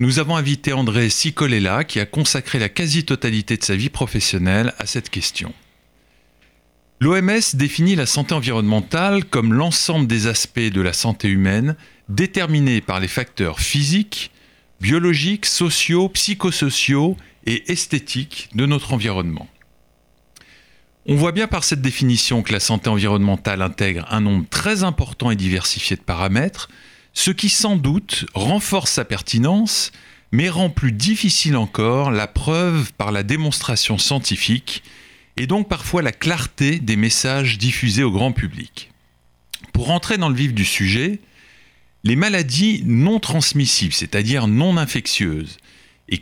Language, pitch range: French, 100-155 Hz